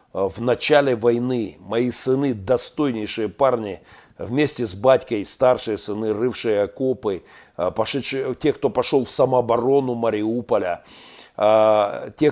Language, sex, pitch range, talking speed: Russian, male, 115-145 Hz, 100 wpm